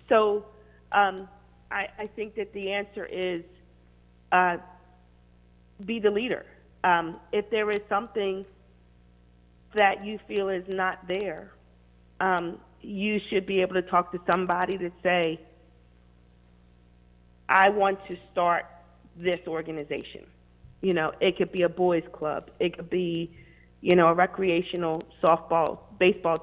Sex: female